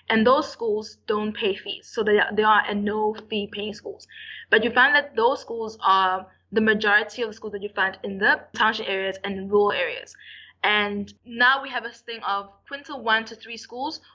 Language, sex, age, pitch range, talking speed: English, female, 20-39, 205-250 Hz, 210 wpm